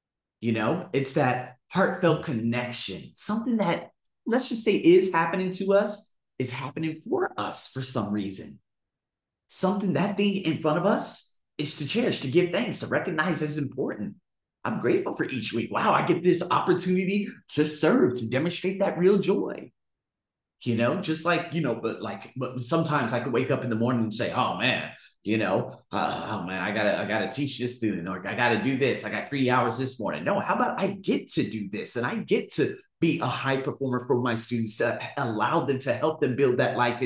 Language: English